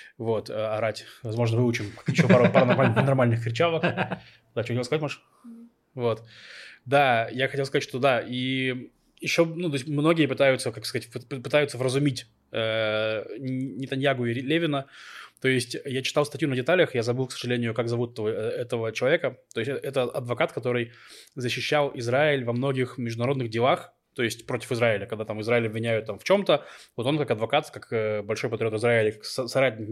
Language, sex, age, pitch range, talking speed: Russian, male, 20-39, 115-140 Hz, 165 wpm